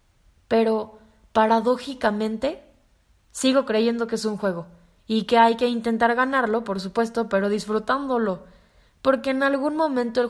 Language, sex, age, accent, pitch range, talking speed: Spanish, female, 20-39, Mexican, 200-245 Hz, 135 wpm